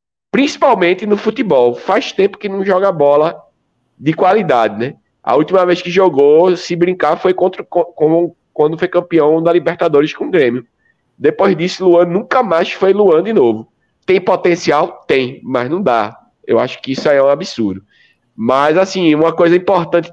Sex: male